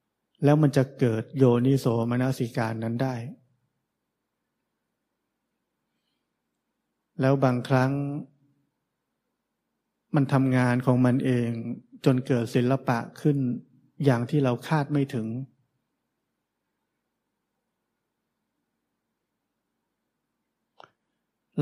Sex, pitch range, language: male, 125-140 Hz, Thai